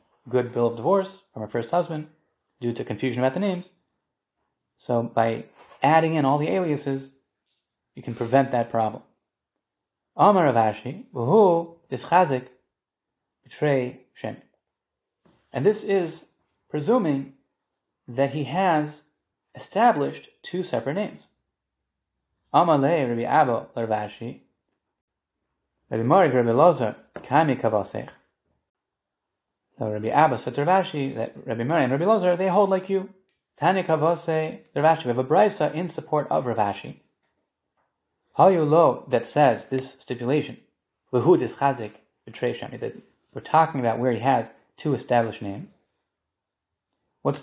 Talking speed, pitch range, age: 110 wpm, 115-160 Hz, 30-49